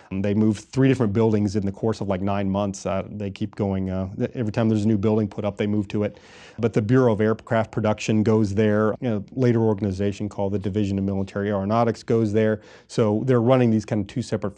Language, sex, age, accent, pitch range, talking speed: English, male, 30-49, American, 100-115 Hz, 230 wpm